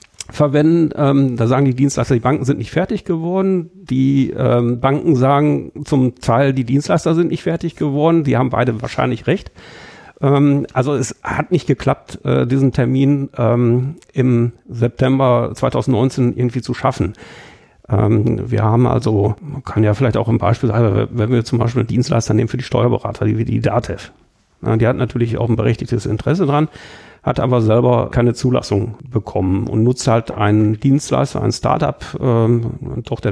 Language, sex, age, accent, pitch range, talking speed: German, male, 50-69, German, 115-140 Hz, 165 wpm